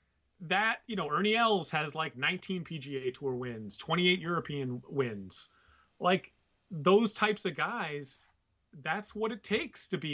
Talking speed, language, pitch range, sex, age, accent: 150 wpm, English, 120-175 Hz, male, 30-49, American